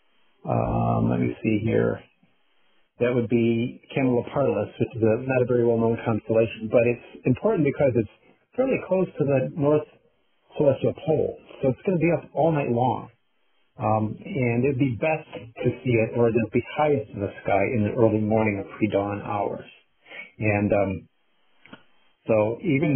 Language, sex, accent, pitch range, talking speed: English, male, American, 110-135 Hz, 175 wpm